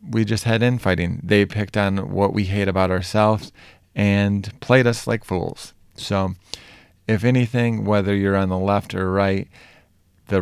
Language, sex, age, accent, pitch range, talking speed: English, male, 30-49, American, 95-105 Hz, 160 wpm